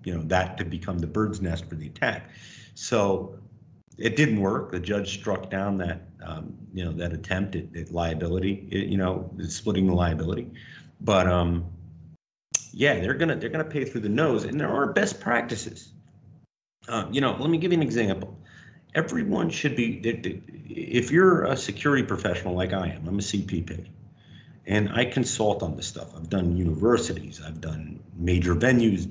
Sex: male